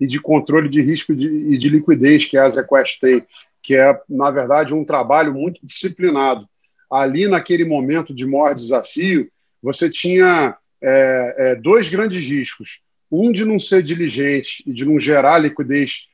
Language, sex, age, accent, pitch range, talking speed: Portuguese, male, 40-59, Brazilian, 150-200 Hz, 165 wpm